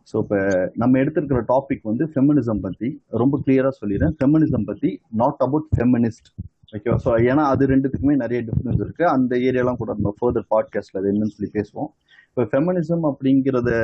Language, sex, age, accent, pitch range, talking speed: Tamil, male, 30-49, native, 115-145 Hz, 150 wpm